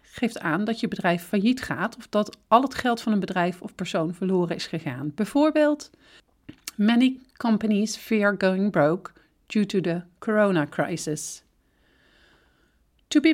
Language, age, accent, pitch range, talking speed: Dutch, 40-59, Dutch, 180-245 Hz, 150 wpm